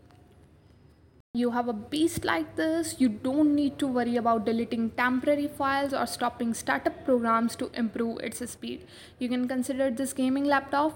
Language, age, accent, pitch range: English, 20-39, Indian, 240-290 Hz